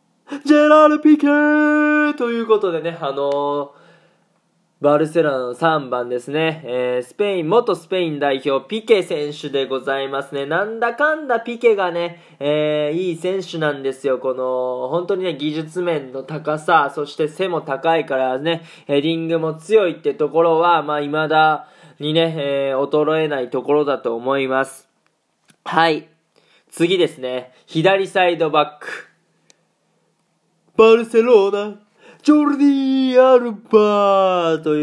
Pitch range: 140-185 Hz